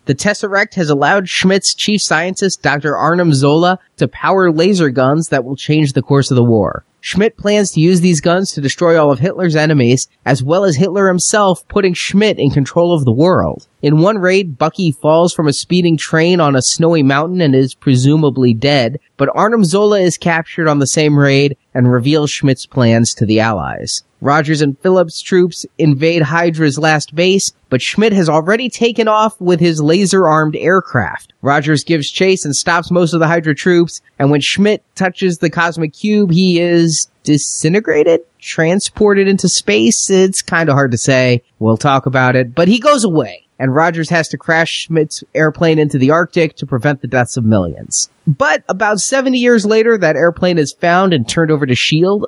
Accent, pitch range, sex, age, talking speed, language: American, 140-180 Hz, male, 20-39, 190 wpm, English